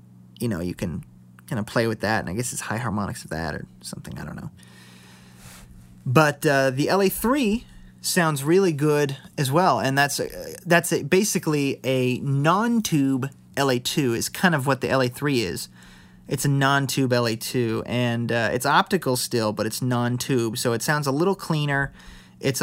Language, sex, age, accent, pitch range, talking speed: English, male, 30-49, American, 115-150 Hz, 175 wpm